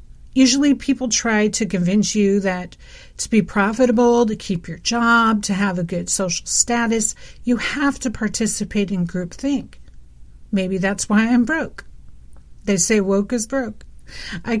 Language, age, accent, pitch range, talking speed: English, 50-69, American, 180-240 Hz, 150 wpm